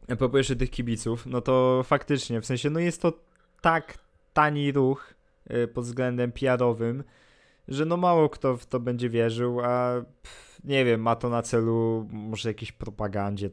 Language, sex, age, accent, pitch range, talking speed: Polish, male, 20-39, native, 110-130 Hz, 160 wpm